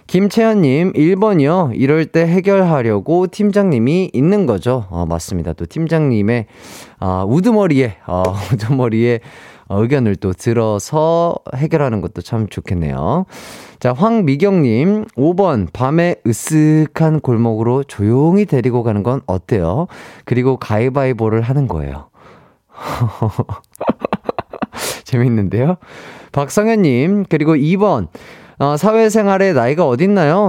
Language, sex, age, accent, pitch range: Korean, male, 30-49, native, 110-170 Hz